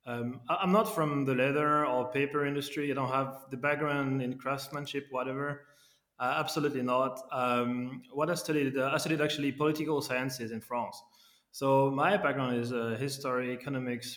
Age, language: 20-39, English